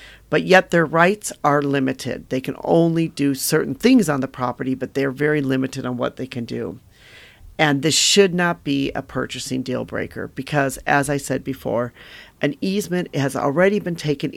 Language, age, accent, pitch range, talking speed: English, 40-59, American, 140-175 Hz, 185 wpm